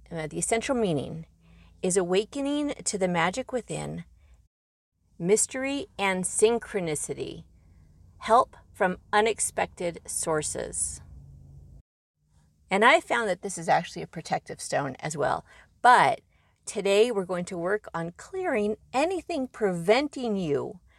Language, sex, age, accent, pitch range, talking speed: English, female, 40-59, American, 160-215 Hz, 110 wpm